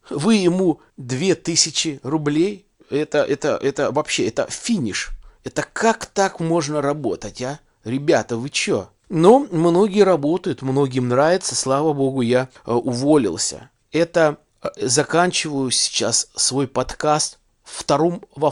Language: Russian